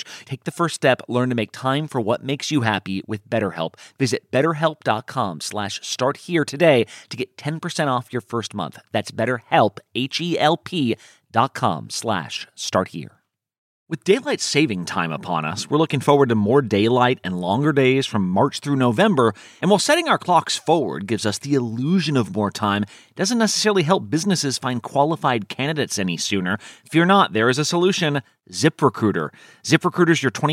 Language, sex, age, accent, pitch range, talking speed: English, male, 30-49, American, 120-170 Hz, 175 wpm